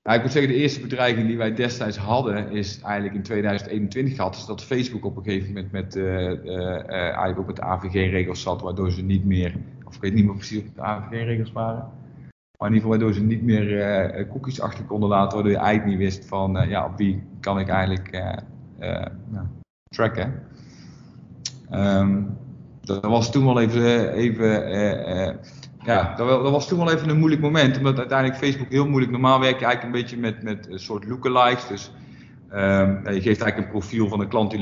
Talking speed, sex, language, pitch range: 210 wpm, male, Dutch, 100-115 Hz